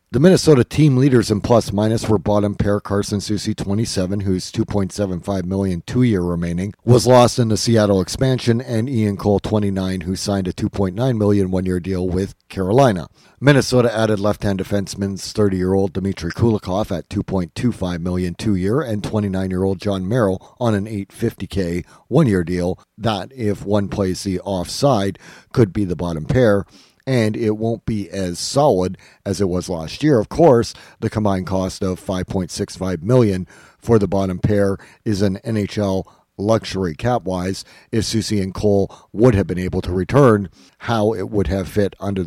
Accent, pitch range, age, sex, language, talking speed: American, 95-115 Hz, 50-69, male, English, 160 wpm